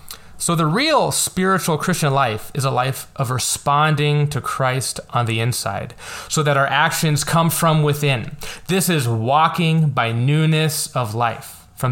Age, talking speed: 20-39, 155 wpm